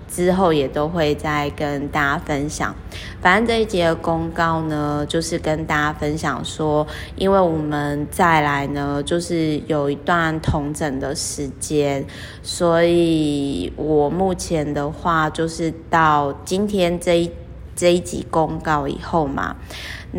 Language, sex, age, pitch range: Chinese, female, 20-39, 145-170 Hz